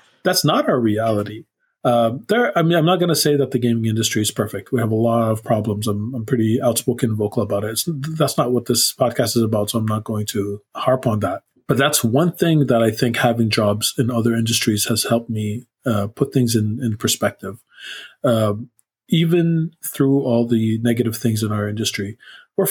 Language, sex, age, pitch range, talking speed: English, male, 40-59, 110-125 Hz, 210 wpm